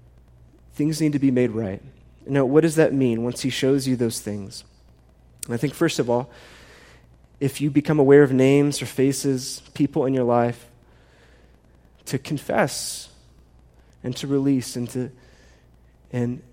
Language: English